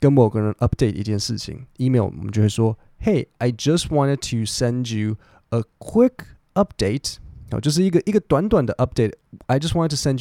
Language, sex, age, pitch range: Chinese, male, 20-39, 105-130 Hz